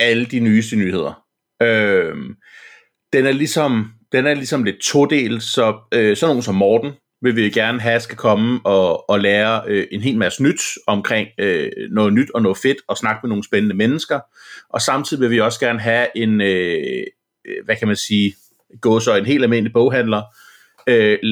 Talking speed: 185 wpm